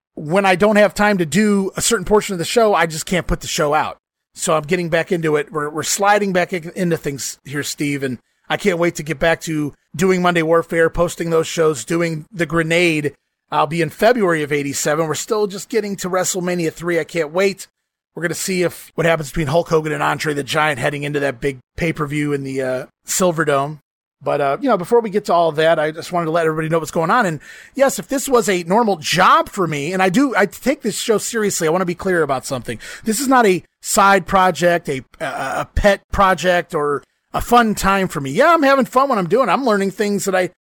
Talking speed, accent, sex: 245 wpm, American, male